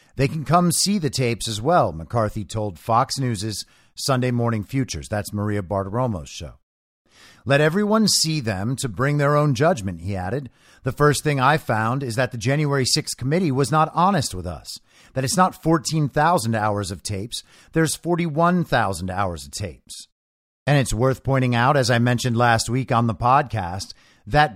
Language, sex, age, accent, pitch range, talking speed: English, male, 50-69, American, 110-160 Hz, 175 wpm